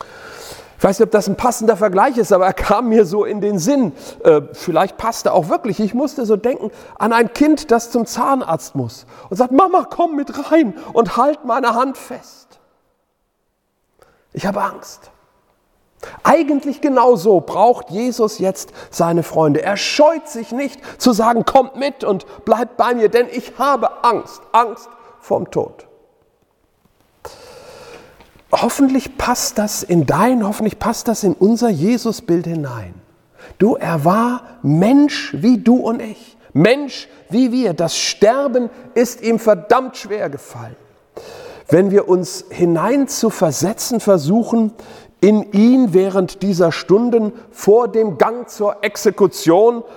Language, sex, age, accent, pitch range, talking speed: German, male, 40-59, German, 200-255 Hz, 145 wpm